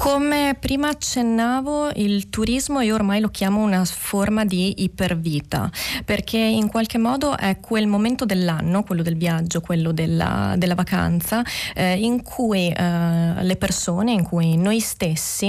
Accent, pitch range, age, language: native, 175-210 Hz, 20-39, Italian